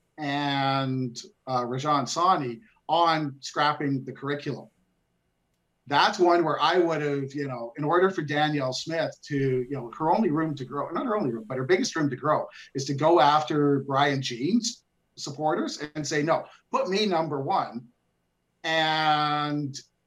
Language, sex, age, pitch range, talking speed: English, male, 50-69, 135-160 Hz, 160 wpm